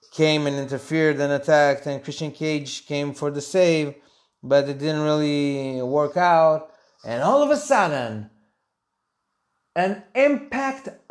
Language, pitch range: English, 135-180 Hz